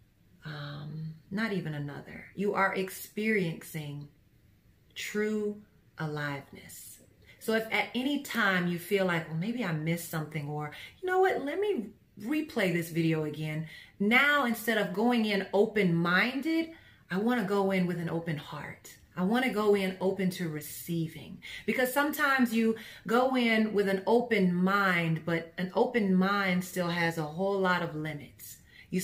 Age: 30-49